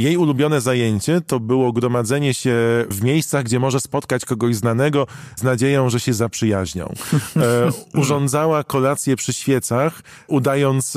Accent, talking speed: native, 130 wpm